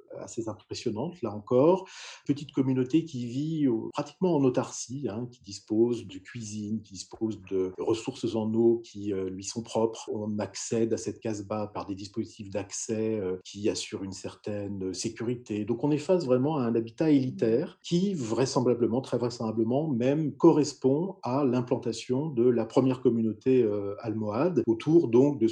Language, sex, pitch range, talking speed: French, male, 105-130 Hz, 160 wpm